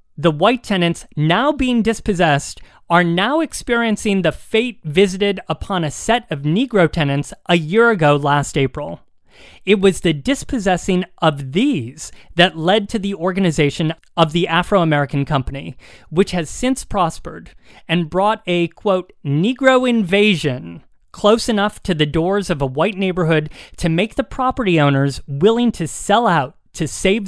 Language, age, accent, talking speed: English, 30-49, American, 150 wpm